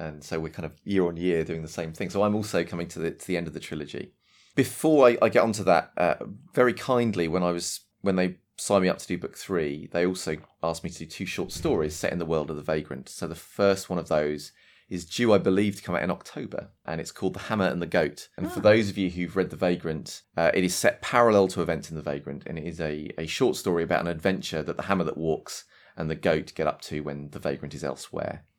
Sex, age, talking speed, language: male, 30-49, 270 wpm, Swedish